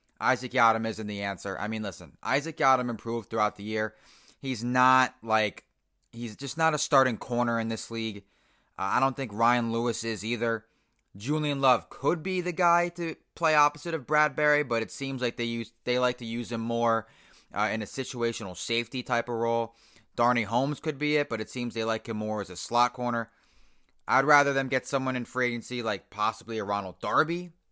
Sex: male